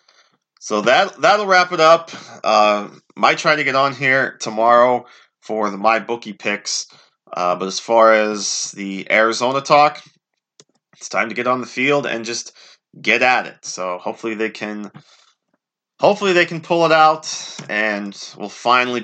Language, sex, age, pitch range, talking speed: English, male, 20-39, 105-130 Hz, 165 wpm